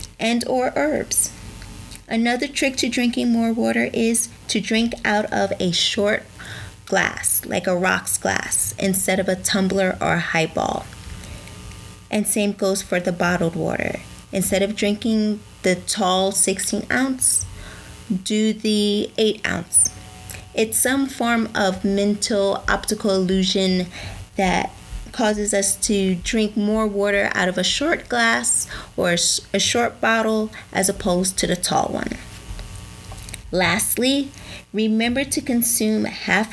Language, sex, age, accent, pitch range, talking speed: English, female, 30-49, American, 185-225 Hz, 130 wpm